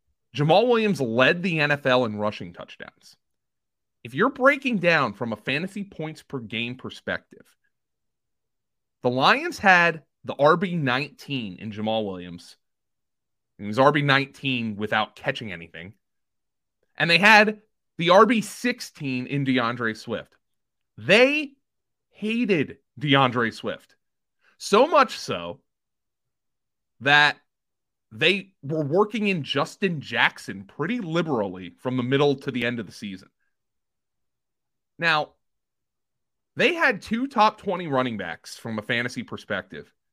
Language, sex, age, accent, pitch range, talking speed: English, male, 30-49, American, 125-190 Hz, 115 wpm